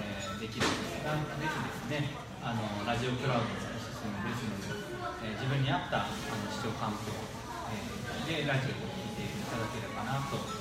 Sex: male